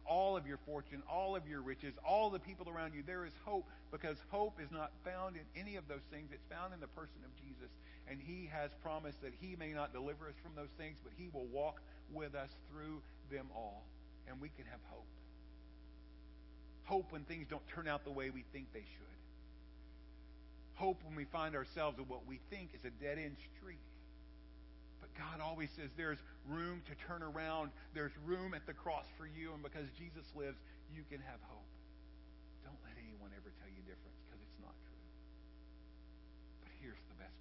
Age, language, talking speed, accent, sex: 50-69, English, 200 wpm, American, male